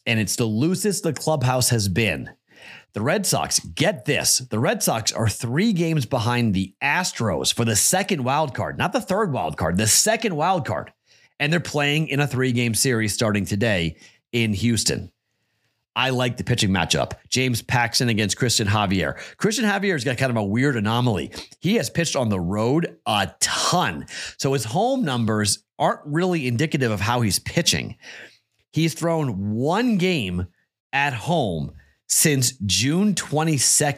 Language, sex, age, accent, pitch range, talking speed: English, male, 30-49, American, 105-145 Hz, 165 wpm